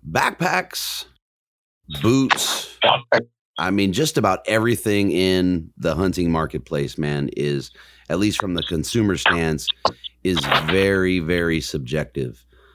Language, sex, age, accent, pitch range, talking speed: English, male, 30-49, American, 75-95 Hz, 110 wpm